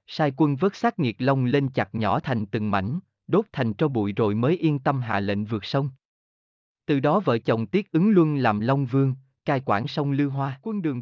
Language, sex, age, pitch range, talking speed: Vietnamese, male, 20-39, 120-160 Hz, 225 wpm